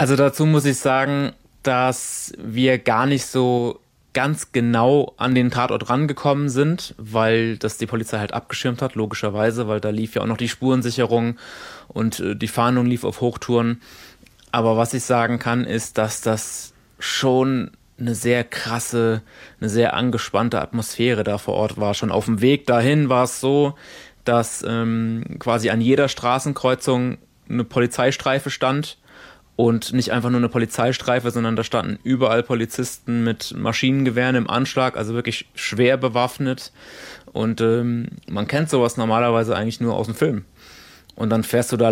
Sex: male